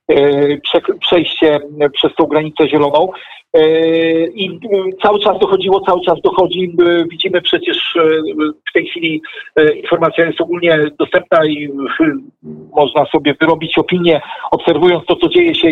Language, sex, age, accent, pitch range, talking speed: Polish, male, 50-69, native, 155-185 Hz, 120 wpm